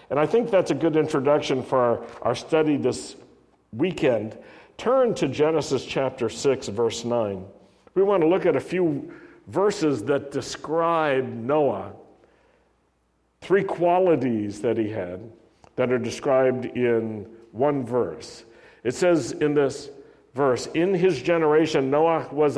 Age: 60-79